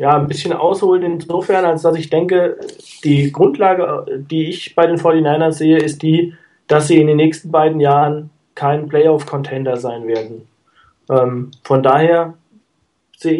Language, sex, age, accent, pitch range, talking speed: German, male, 20-39, German, 150-175 Hz, 150 wpm